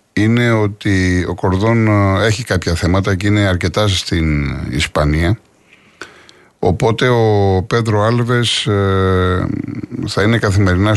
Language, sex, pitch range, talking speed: Greek, male, 90-115 Hz, 105 wpm